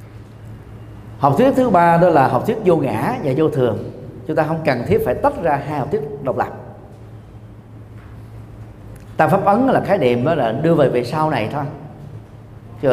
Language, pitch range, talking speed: Vietnamese, 115-160 Hz, 185 wpm